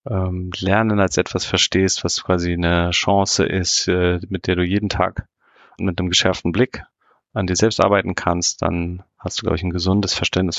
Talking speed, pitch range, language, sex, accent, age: 175 wpm, 90-105 Hz, German, male, German, 30-49